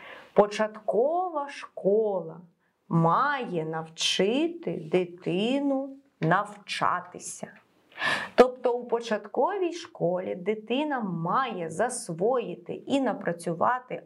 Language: Ukrainian